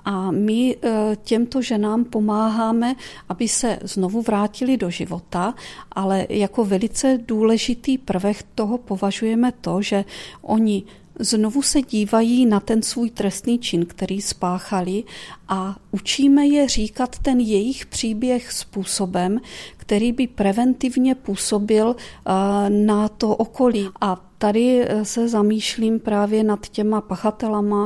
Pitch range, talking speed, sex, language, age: 200-230 Hz, 115 wpm, female, Czech, 40-59